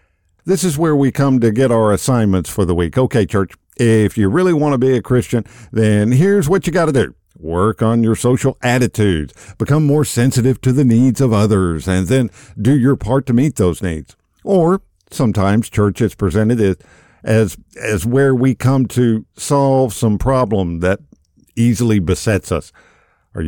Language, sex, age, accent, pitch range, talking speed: English, male, 50-69, American, 100-140 Hz, 180 wpm